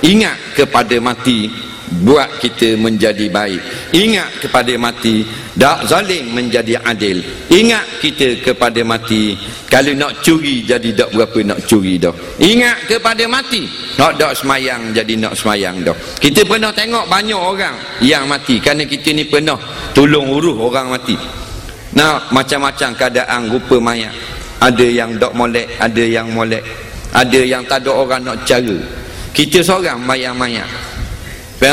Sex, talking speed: male, 140 wpm